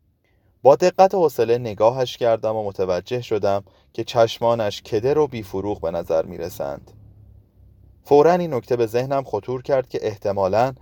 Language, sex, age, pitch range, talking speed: Persian, male, 30-49, 105-145 Hz, 135 wpm